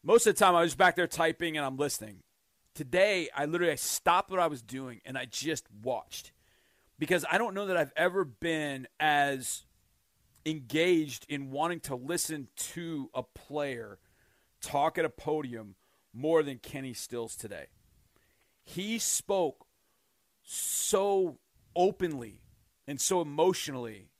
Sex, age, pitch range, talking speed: male, 40-59, 135-175 Hz, 140 wpm